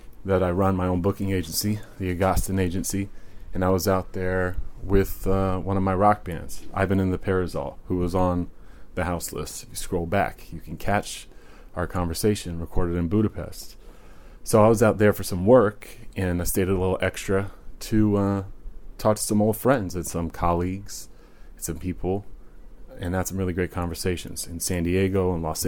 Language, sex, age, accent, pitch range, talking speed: English, male, 30-49, American, 90-100 Hz, 190 wpm